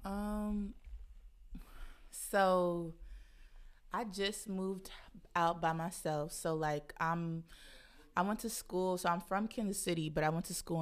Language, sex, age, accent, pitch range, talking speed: English, female, 20-39, American, 155-175 Hz, 140 wpm